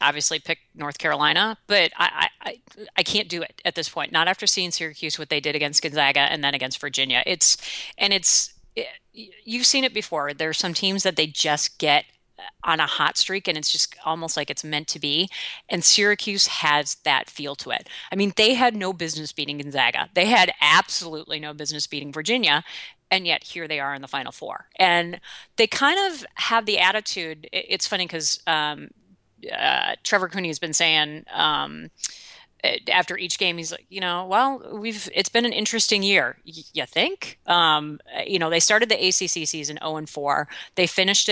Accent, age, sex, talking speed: American, 30-49, female, 195 wpm